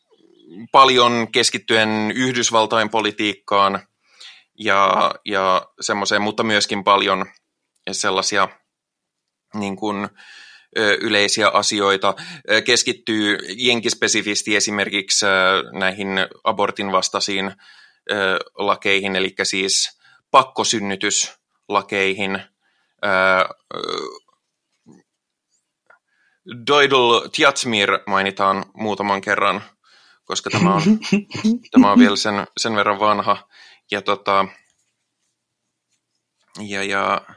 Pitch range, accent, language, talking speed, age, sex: 100-115 Hz, native, Finnish, 65 wpm, 30-49, male